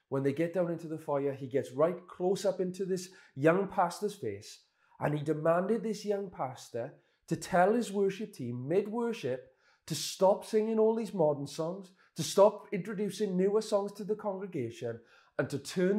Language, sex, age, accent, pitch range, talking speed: English, male, 30-49, British, 130-170 Hz, 175 wpm